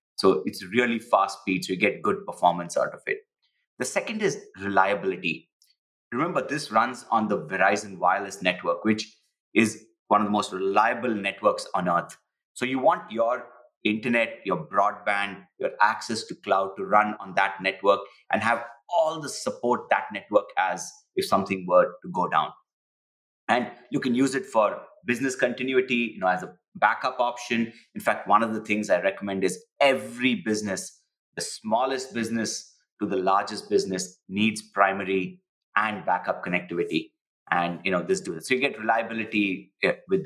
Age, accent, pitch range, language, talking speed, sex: 30-49, Indian, 100-135 Hz, English, 170 wpm, male